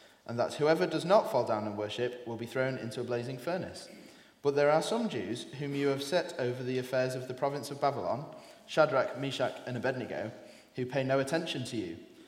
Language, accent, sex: English, British, male